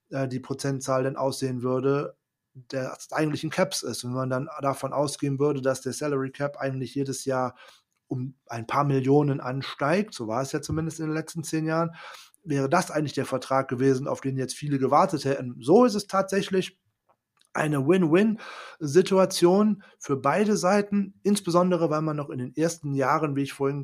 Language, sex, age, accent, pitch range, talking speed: German, male, 30-49, German, 135-165 Hz, 170 wpm